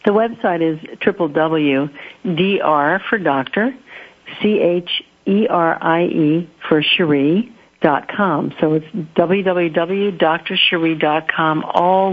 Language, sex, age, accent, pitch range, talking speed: English, female, 60-79, American, 155-200 Hz, 90 wpm